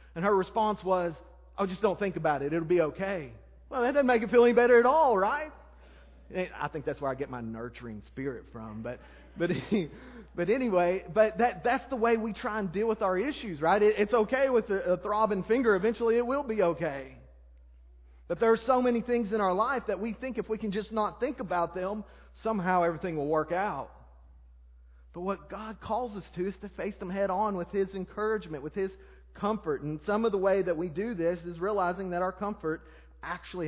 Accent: American